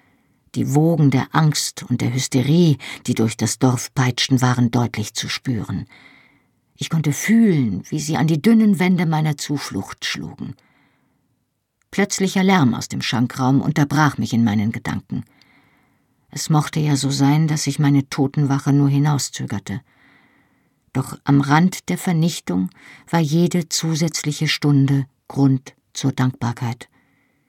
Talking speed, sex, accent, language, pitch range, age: 135 wpm, female, German, German, 135-165 Hz, 50-69